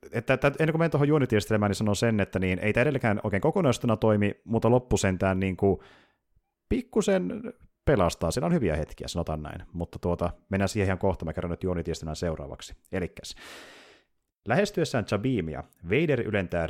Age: 30-49